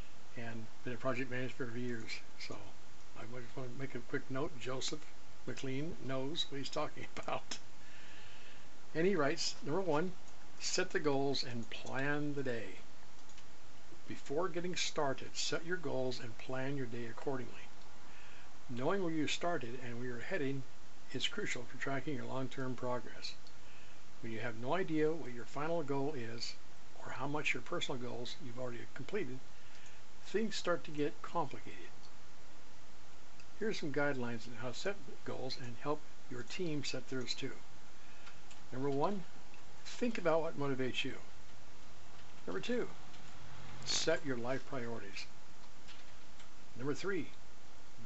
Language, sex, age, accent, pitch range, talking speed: English, male, 60-79, American, 120-145 Hz, 145 wpm